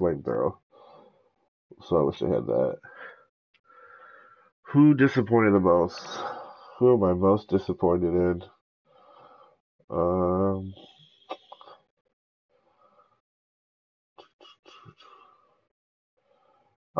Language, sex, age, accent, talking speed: English, male, 30-49, American, 65 wpm